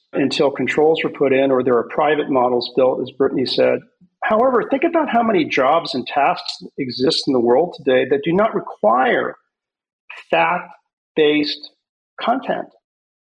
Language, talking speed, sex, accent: English, 150 wpm, male, American